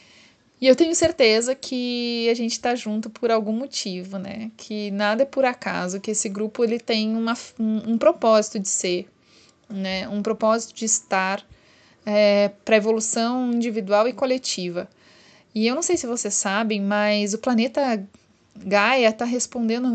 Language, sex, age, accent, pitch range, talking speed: Portuguese, female, 20-39, Brazilian, 210-235 Hz, 160 wpm